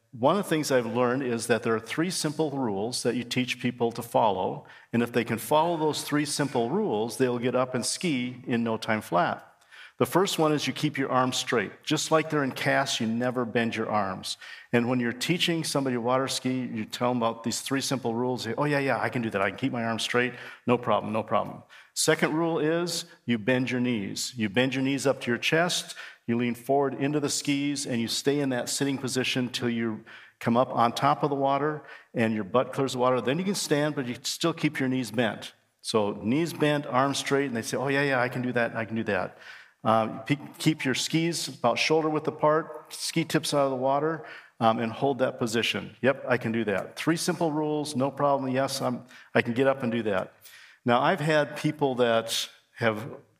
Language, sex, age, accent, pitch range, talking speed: English, male, 50-69, American, 115-145 Hz, 230 wpm